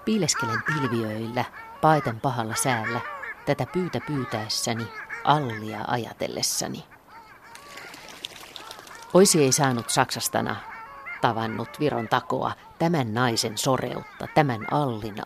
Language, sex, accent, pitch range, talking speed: Finnish, female, native, 115-150 Hz, 85 wpm